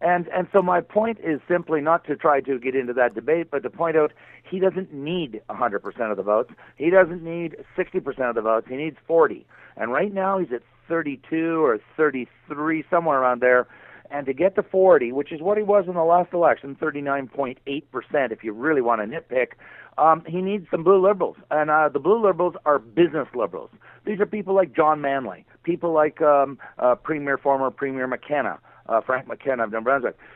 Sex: male